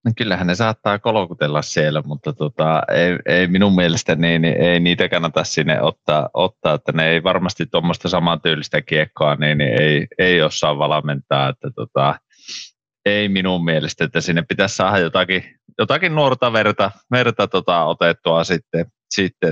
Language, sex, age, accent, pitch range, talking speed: Finnish, male, 30-49, native, 80-100 Hz, 145 wpm